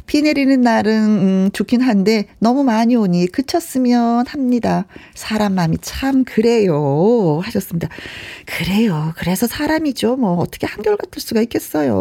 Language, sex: Korean, female